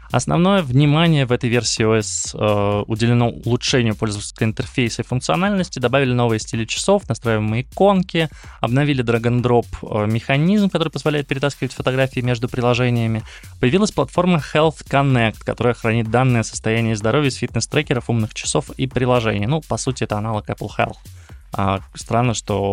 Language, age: Russian, 20-39